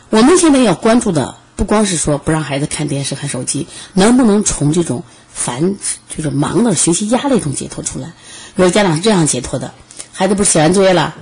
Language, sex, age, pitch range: Chinese, female, 30-49, 145-235 Hz